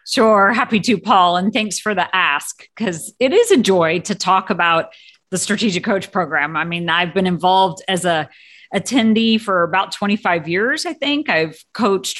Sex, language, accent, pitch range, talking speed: female, English, American, 175-220 Hz, 180 wpm